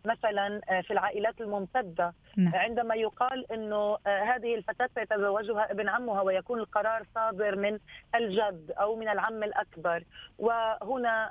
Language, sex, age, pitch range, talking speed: Arabic, female, 30-49, 190-235 Hz, 115 wpm